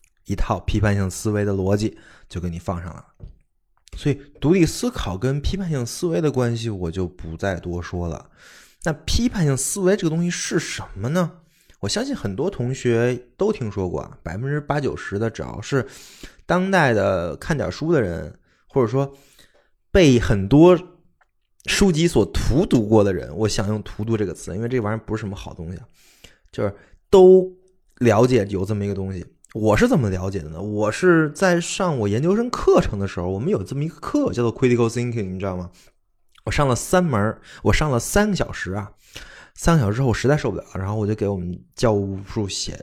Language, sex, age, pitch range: Chinese, male, 20-39, 95-140 Hz